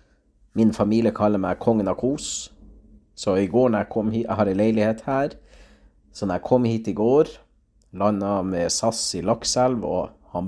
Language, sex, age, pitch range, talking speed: Czech, male, 30-49, 95-120 Hz, 155 wpm